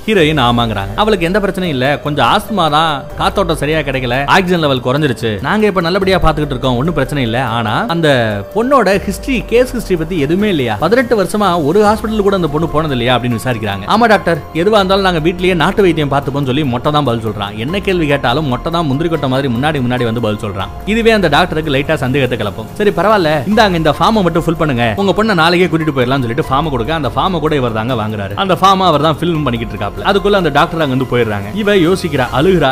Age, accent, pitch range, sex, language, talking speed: 30-49, native, 125-185 Hz, male, Tamil, 200 wpm